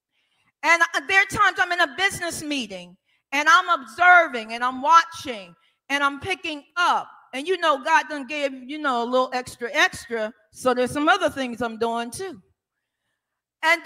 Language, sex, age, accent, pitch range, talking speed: English, female, 40-59, American, 245-345 Hz, 175 wpm